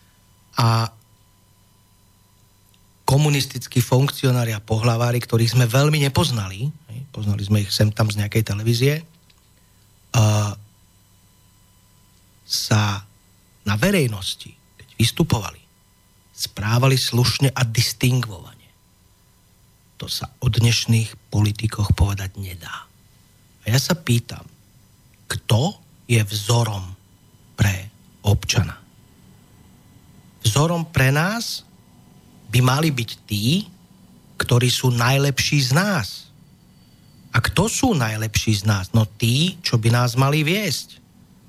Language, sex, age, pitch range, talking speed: Slovak, male, 40-59, 100-135 Hz, 95 wpm